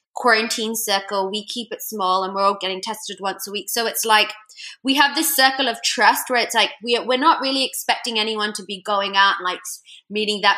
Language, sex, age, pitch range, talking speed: English, female, 20-39, 200-255 Hz, 220 wpm